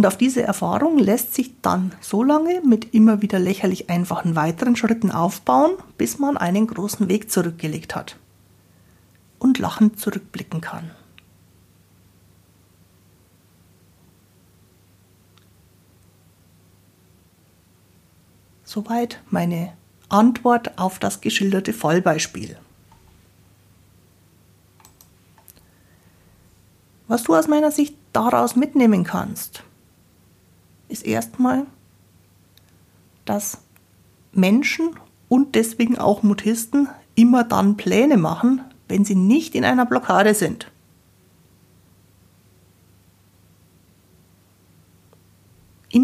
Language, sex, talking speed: German, female, 80 wpm